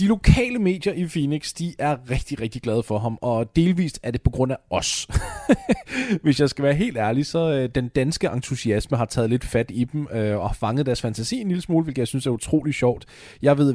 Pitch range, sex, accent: 115-150 Hz, male, native